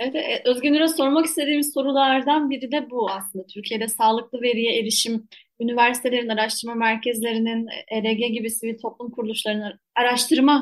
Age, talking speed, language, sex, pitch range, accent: 30-49, 125 wpm, Turkish, female, 225-290 Hz, native